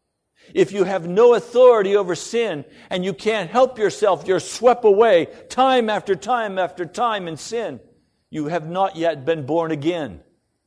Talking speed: 165 wpm